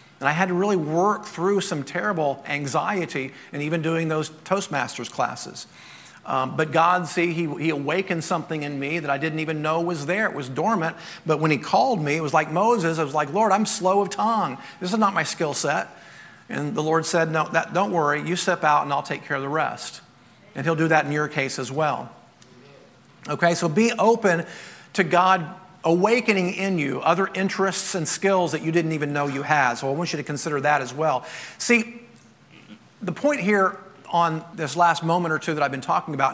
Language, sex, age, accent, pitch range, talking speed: English, male, 40-59, American, 150-190 Hz, 215 wpm